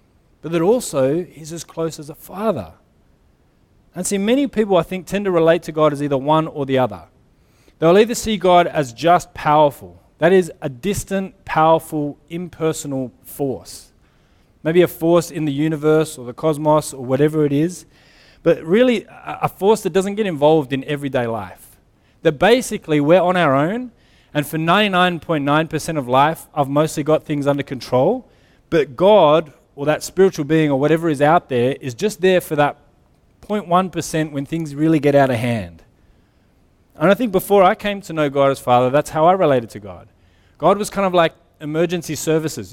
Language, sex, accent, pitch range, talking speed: English, male, Australian, 135-175 Hz, 180 wpm